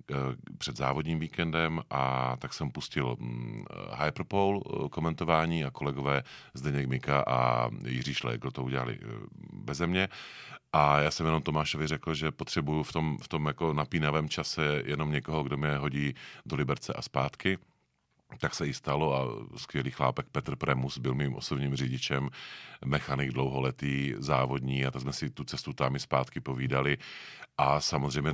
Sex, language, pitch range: male, Czech, 65-75 Hz